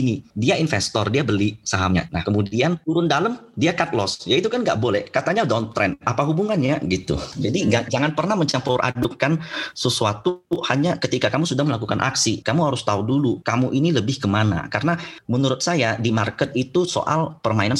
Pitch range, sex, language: 100-140 Hz, male, Indonesian